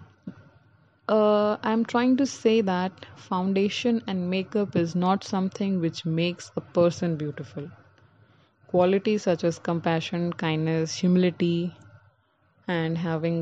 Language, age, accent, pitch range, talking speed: English, 20-39, Indian, 160-195 Hz, 110 wpm